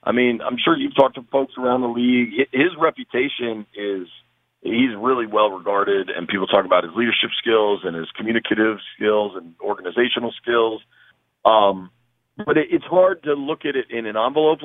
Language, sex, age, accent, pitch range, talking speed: English, male, 40-59, American, 115-150 Hz, 175 wpm